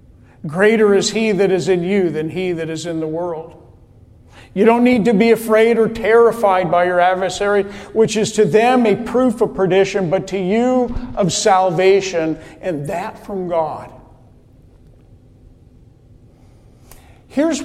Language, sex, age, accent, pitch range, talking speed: English, male, 50-69, American, 145-220 Hz, 145 wpm